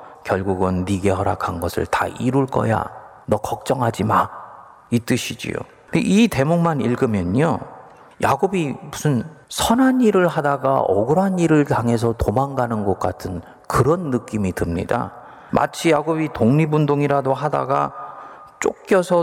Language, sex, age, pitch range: Korean, male, 40-59, 115-165 Hz